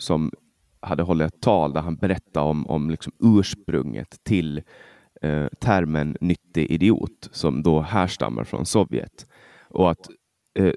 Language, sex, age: Swedish, male, 30-49